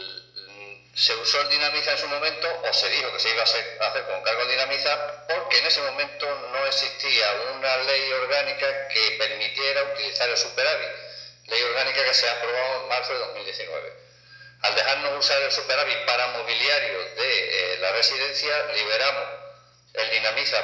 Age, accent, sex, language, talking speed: 50-69, Spanish, male, Spanish, 160 wpm